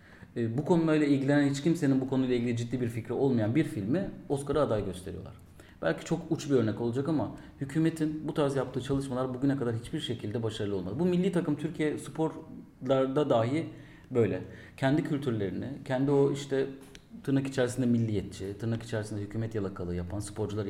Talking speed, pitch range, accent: 160 wpm, 115-145 Hz, native